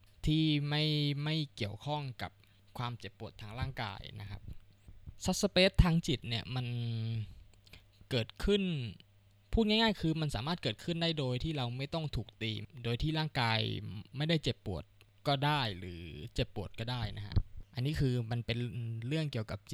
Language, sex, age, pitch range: Thai, male, 20-39, 105-135 Hz